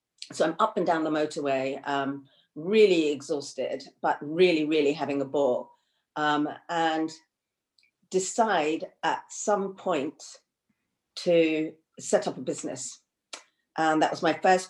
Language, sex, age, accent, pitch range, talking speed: English, female, 40-59, British, 145-180 Hz, 130 wpm